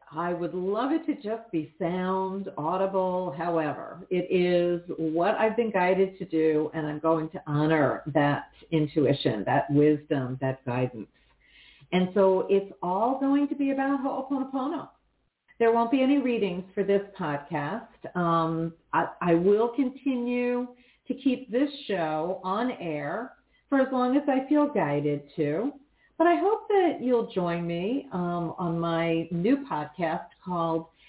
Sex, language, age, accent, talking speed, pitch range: female, English, 50-69, American, 150 wpm, 165-235 Hz